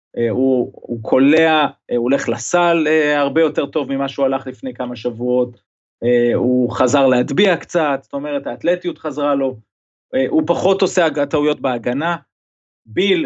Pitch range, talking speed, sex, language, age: 120-155 Hz, 135 wpm, male, Hebrew, 30-49